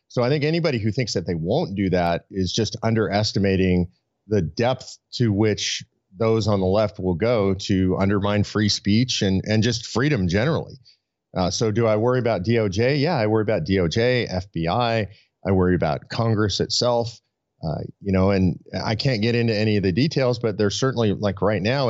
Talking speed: 190 wpm